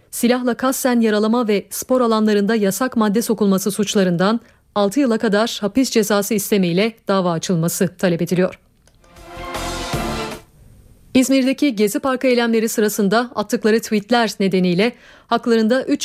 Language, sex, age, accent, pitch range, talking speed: Turkish, female, 40-59, native, 195-240 Hz, 110 wpm